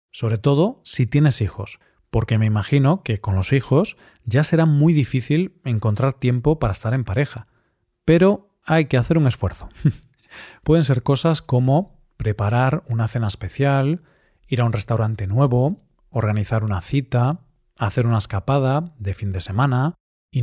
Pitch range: 115-145 Hz